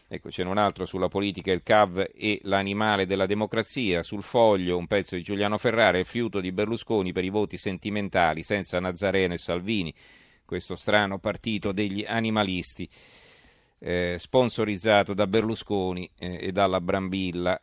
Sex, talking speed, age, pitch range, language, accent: male, 150 wpm, 40-59, 95-110 Hz, Italian, native